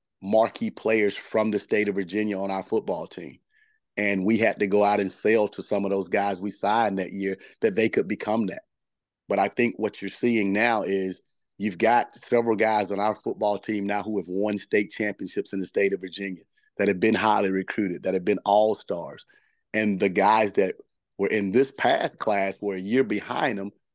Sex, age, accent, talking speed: male, 30-49, American, 210 wpm